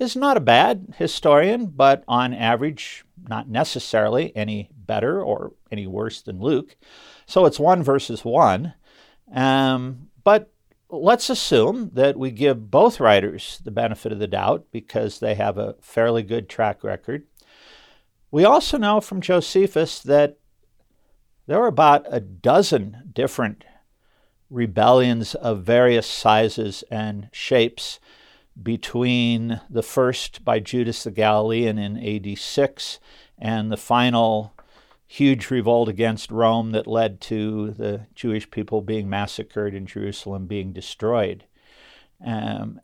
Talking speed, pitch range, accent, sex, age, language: 130 wpm, 110-145 Hz, American, male, 50-69, English